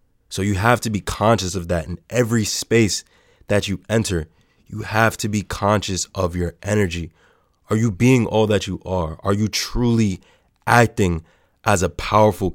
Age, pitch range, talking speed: 20-39, 90-105 Hz, 170 wpm